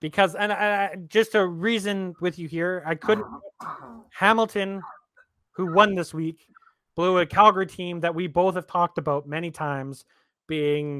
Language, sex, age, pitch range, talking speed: English, male, 30-49, 145-185 Hz, 155 wpm